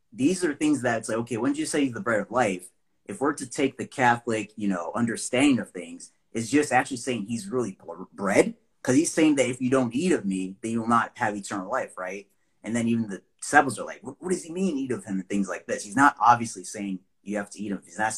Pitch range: 95-120 Hz